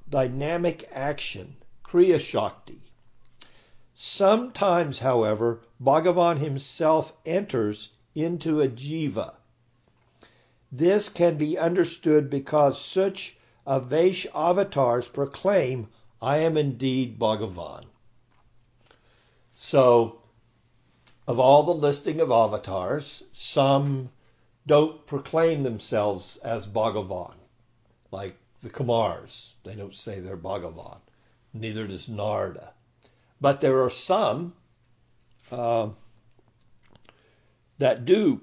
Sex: male